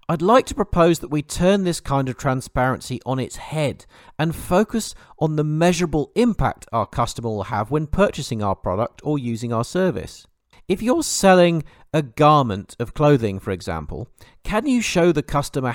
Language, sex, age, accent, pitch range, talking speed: English, male, 40-59, British, 115-170 Hz, 175 wpm